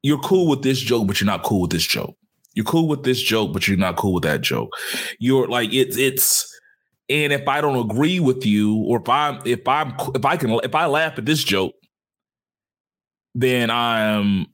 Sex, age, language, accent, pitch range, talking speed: male, 30-49, English, American, 105-145 Hz, 210 wpm